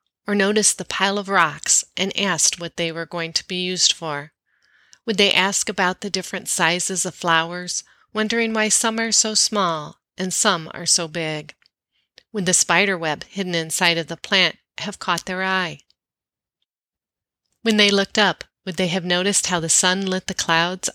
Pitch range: 165-200 Hz